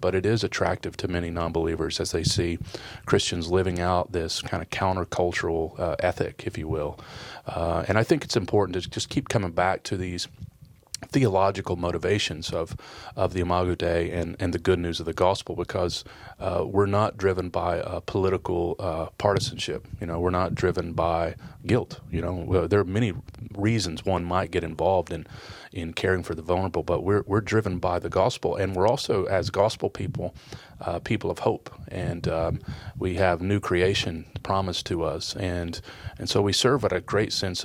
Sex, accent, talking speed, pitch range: male, American, 190 wpm, 85-100 Hz